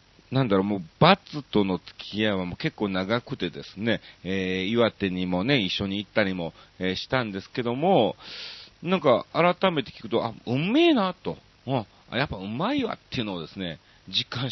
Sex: male